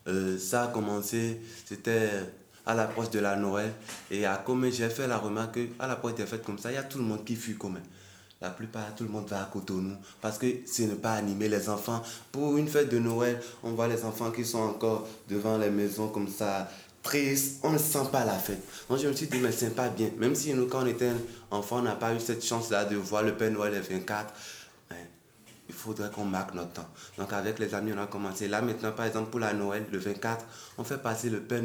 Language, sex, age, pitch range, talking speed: French, male, 20-39, 100-115 Hz, 250 wpm